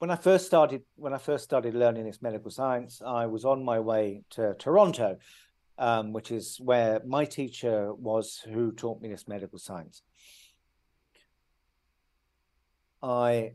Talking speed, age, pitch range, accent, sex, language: 145 wpm, 50-69, 110-145 Hz, British, male, English